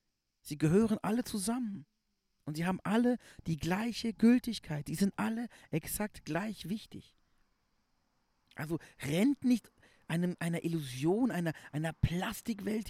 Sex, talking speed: male, 120 wpm